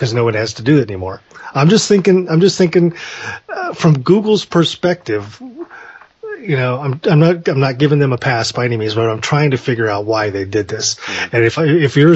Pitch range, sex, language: 125-160 Hz, male, English